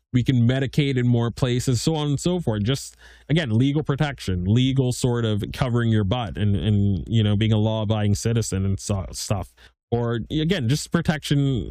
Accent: American